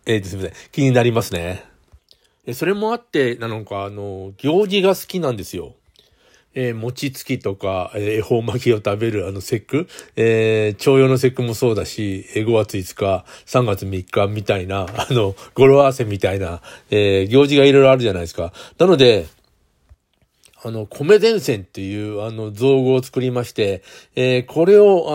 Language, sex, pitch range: Japanese, male, 100-135 Hz